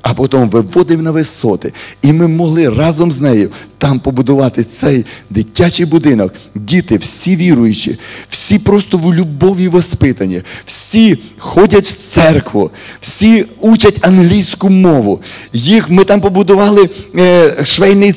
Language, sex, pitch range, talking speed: Russian, male, 115-185 Hz, 125 wpm